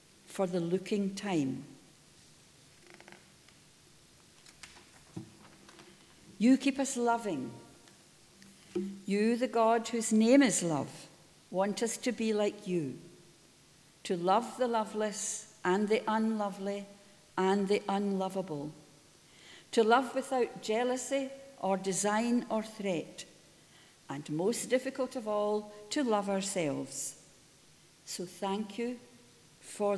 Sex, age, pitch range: female, 60-79, 180-230 Hz